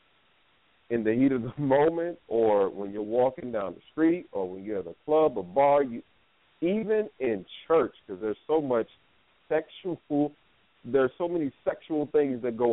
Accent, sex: American, male